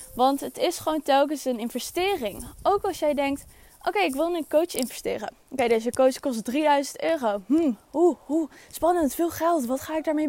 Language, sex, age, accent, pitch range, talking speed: Dutch, female, 10-29, Dutch, 260-335 Hz, 190 wpm